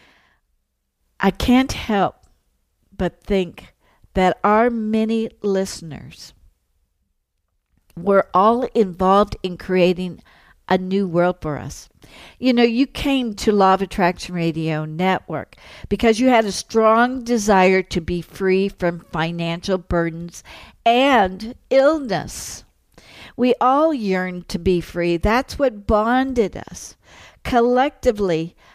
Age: 60-79